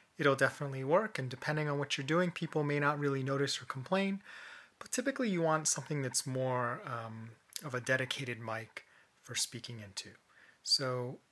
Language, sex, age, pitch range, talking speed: English, male, 30-49, 130-155 Hz, 170 wpm